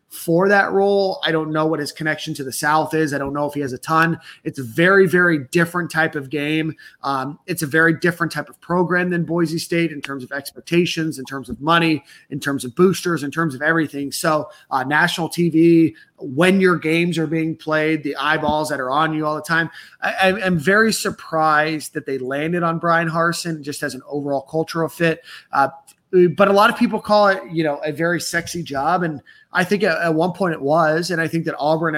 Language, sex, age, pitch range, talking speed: English, male, 30-49, 140-175 Hz, 225 wpm